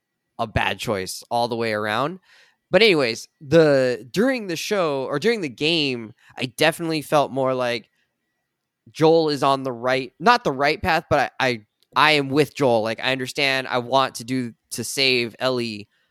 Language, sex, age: English, male, 10-29